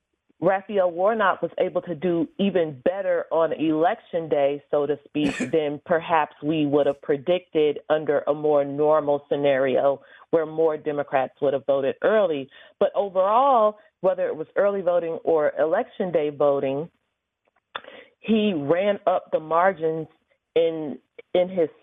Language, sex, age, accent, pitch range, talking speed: English, female, 40-59, American, 160-230 Hz, 140 wpm